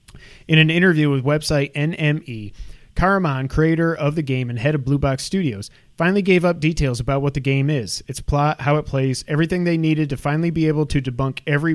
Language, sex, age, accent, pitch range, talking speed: English, male, 30-49, American, 135-155 Hz, 210 wpm